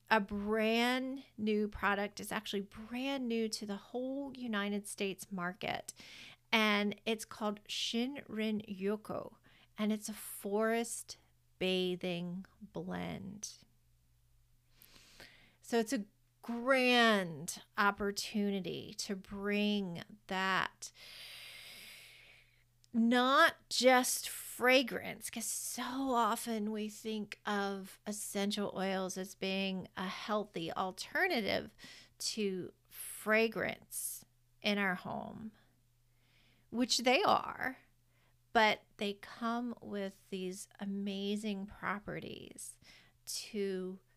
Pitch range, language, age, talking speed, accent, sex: 175-220 Hz, English, 40-59, 90 wpm, American, female